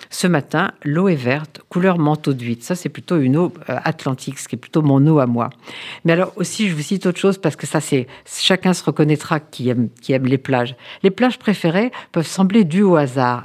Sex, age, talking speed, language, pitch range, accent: female, 50-69, 230 wpm, French, 140-185 Hz, French